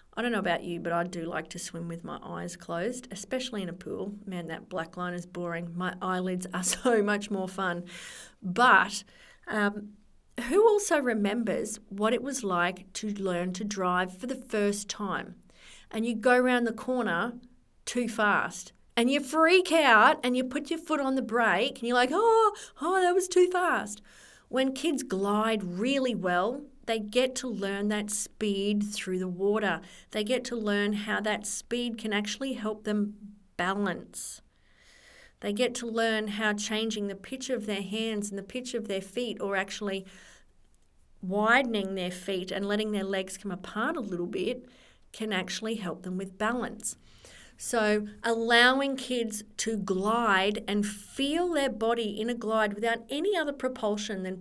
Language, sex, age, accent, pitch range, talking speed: English, female, 40-59, Australian, 195-250 Hz, 175 wpm